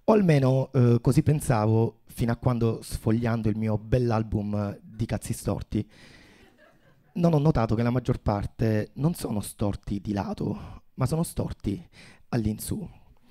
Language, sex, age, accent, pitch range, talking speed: Italian, male, 30-49, native, 115-145 Hz, 140 wpm